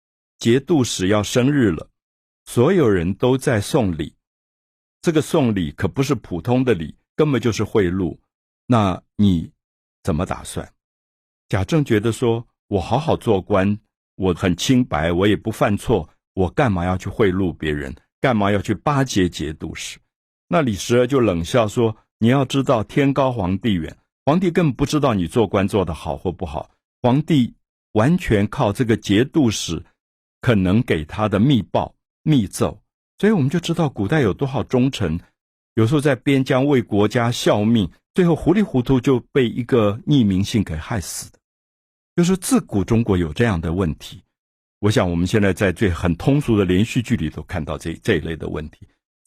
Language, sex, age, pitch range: Chinese, male, 50-69, 95-135 Hz